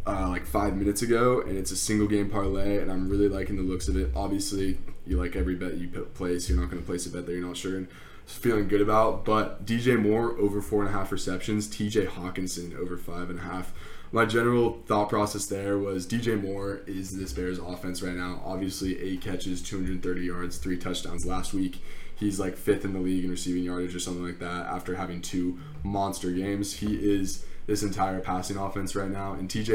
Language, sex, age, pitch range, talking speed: English, male, 20-39, 90-105 Hz, 220 wpm